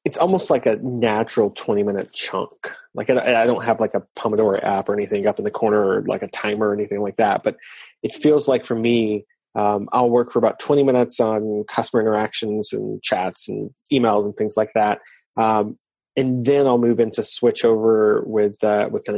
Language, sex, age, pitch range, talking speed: English, male, 20-39, 105-125 Hz, 205 wpm